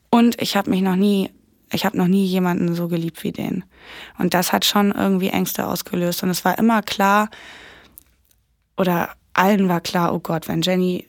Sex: female